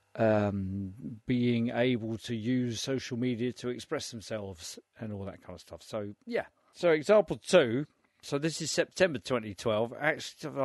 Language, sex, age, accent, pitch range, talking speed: English, male, 50-69, British, 110-135 Hz, 145 wpm